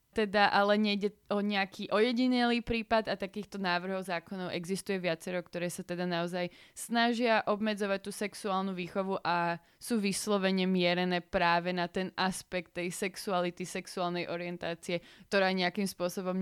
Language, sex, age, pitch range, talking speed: Slovak, female, 20-39, 180-210 Hz, 135 wpm